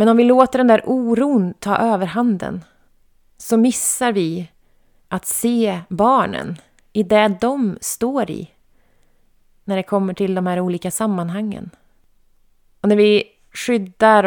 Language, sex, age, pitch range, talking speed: Swedish, female, 30-49, 180-220 Hz, 140 wpm